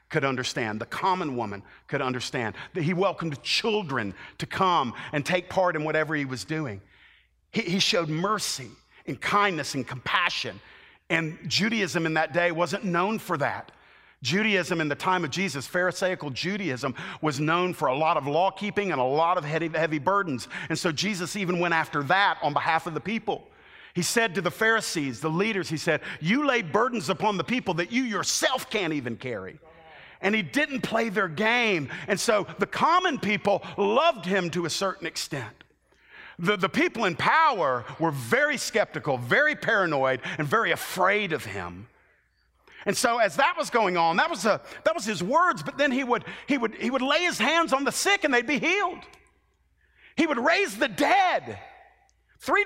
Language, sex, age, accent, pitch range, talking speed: English, male, 50-69, American, 160-255 Hz, 180 wpm